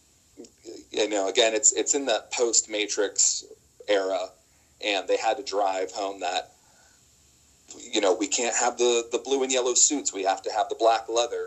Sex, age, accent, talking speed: male, 30-49, American, 180 wpm